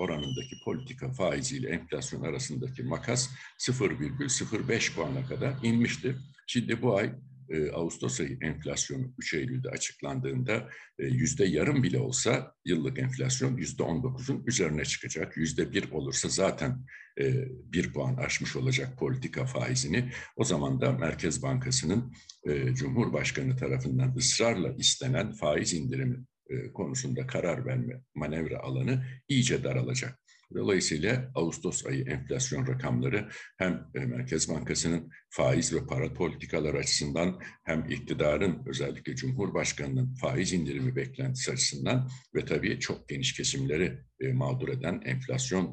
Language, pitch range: Turkish, 85-130 Hz